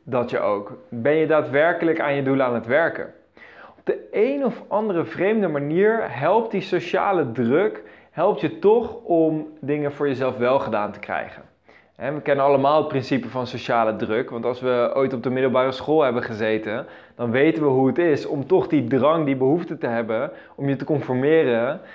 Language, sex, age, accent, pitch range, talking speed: Dutch, male, 20-39, Dutch, 130-165 Hz, 190 wpm